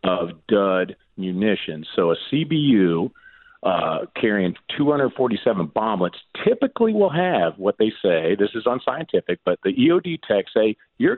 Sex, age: male, 50-69